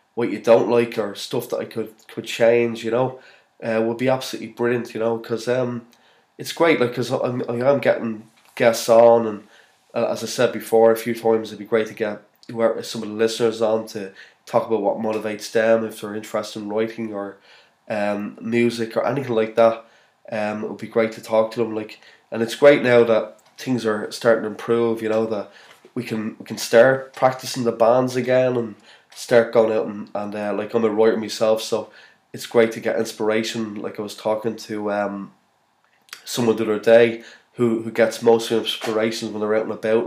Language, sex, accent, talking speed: English, male, Irish, 205 wpm